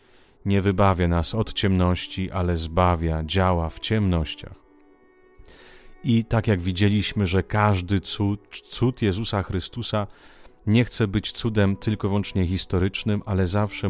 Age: 40-59